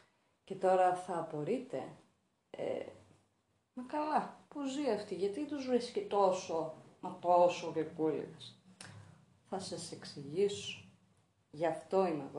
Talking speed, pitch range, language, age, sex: 110 wpm, 165-275 Hz, Greek, 30-49, female